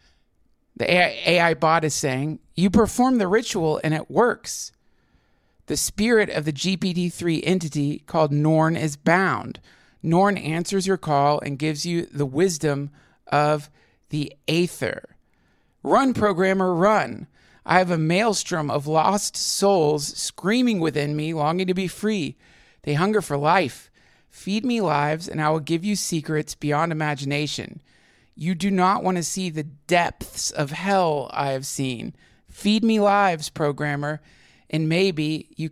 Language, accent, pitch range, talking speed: English, American, 150-185 Hz, 145 wpm